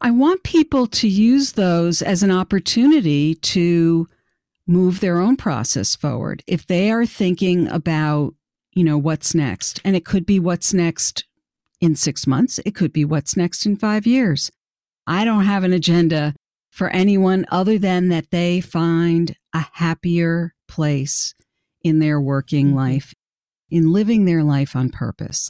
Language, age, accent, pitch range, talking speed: English, 50-69, American, 160-195 Hz, 155 wpm